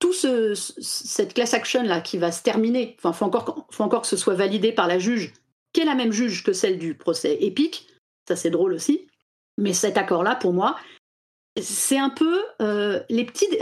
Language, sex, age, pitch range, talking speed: French, female, 40-59, 215-305 Hz, 210 wpm